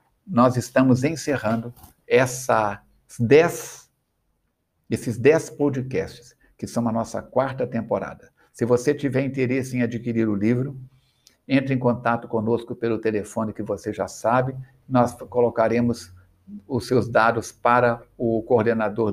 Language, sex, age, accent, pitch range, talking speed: Portuguese, male, 60-79, Brazilian, 110-130 Hz, 125 wpm